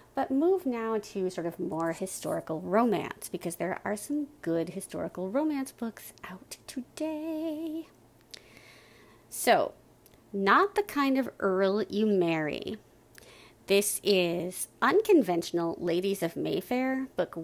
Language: English